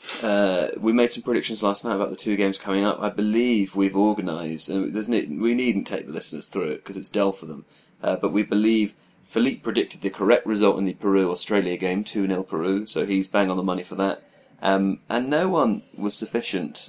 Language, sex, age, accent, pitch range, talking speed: English, male, 30-49, British, 100-115 Hz, 205 wpm